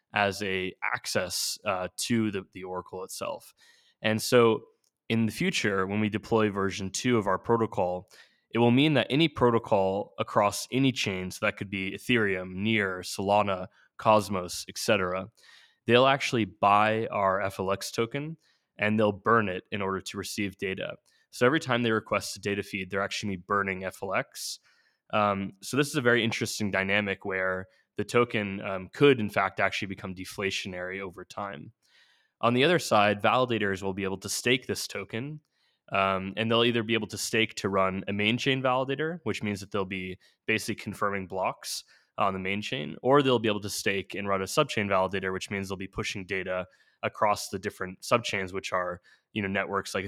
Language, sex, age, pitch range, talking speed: English, male, 20-39, 95-115 Hz, 185 wpm